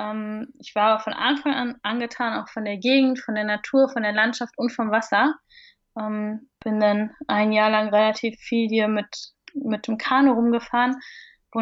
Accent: German